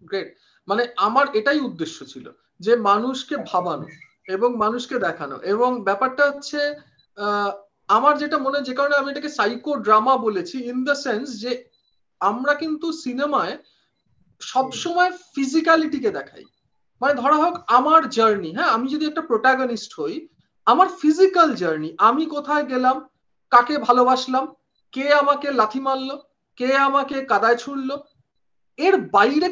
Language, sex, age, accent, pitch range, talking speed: Bengali, male, 40-59, native, 245-320 Hz, 130 wpm